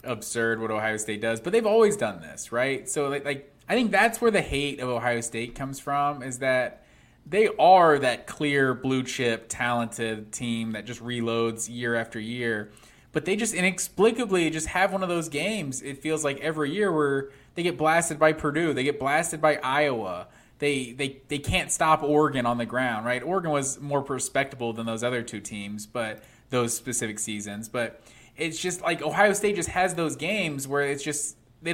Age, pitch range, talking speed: 20-39, 120-155 Hz, 195 wpm